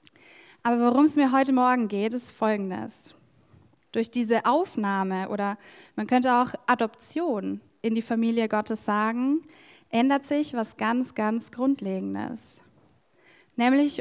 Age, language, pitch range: 10-29, German, 220-275 Hz